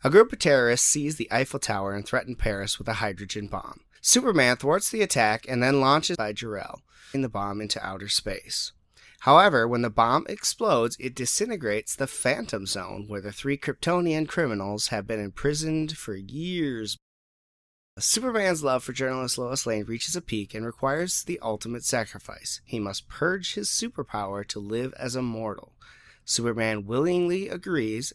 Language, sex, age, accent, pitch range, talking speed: English, male, 30-49, American, 105-145 Hz, 160 wpm